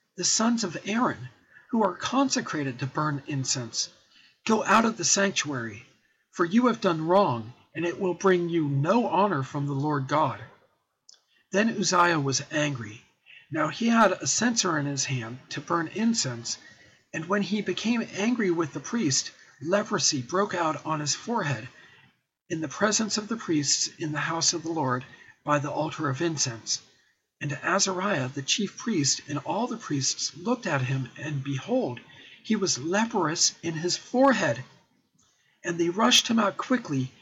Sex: male